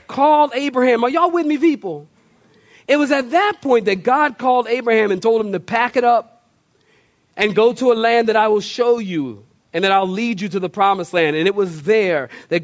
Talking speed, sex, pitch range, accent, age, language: 225 wpm, male, 175-240 Hz, American, 40-59, English